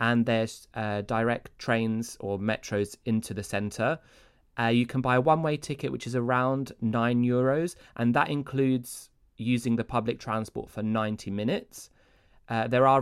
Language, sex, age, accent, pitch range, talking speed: Greek, male, 20-39, British, 105-130 Hz, 160 wpm